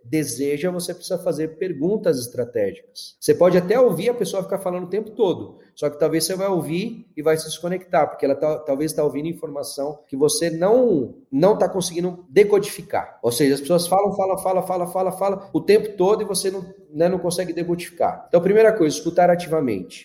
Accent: Brazilian